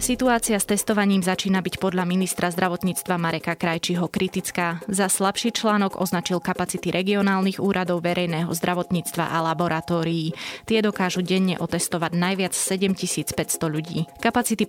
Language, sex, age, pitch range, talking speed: Slovak, female, 20-39, 165-195 Hz, 125 wpm